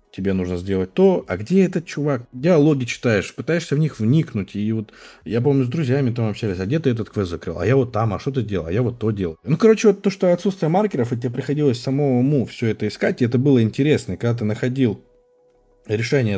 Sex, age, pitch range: male, 20-39, 90-135 Hz